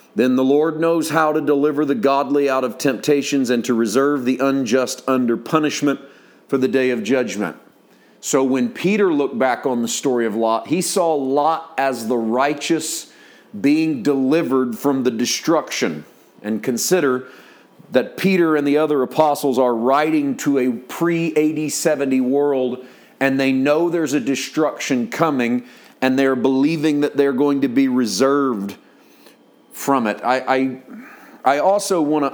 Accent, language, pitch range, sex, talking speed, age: American, English, 115-145 Hz, male, 155 wpm, 40-59